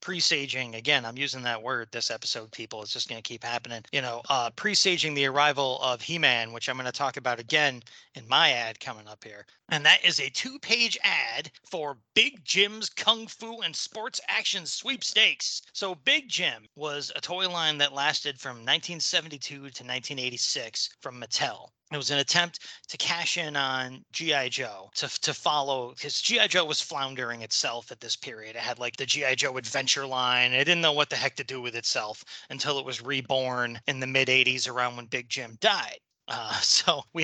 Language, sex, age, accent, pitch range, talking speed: English, male, 30-49, American, 125-165 Hz, 195 wpm